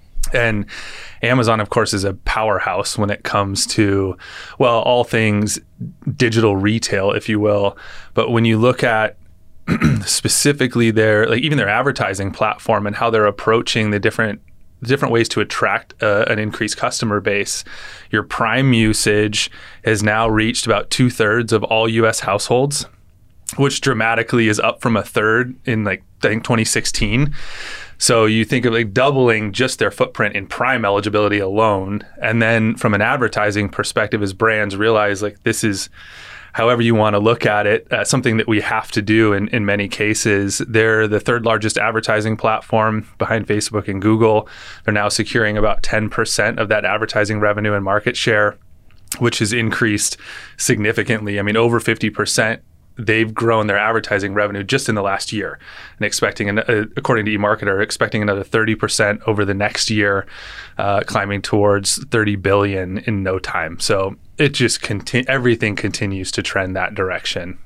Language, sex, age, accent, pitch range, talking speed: English, male, 20-39, American, 105-115 Hz, 165 wpm